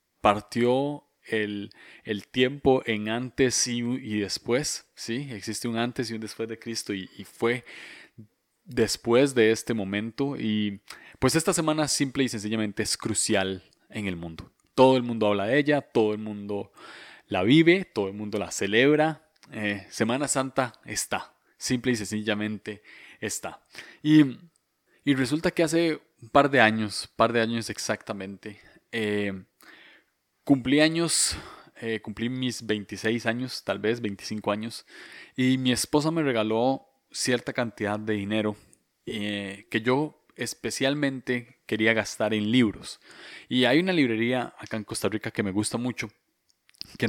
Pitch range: 105-130 Hz